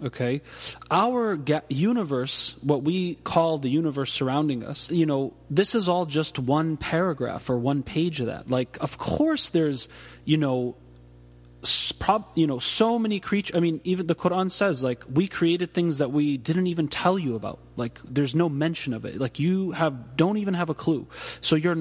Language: English